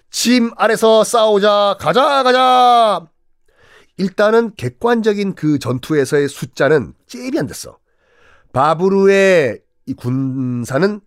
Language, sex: Korean, male